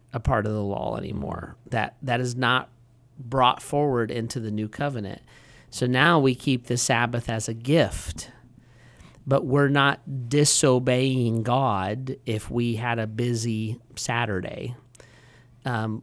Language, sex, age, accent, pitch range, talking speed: English, male, 40-59, American, 115-135 Hz, 140 wpm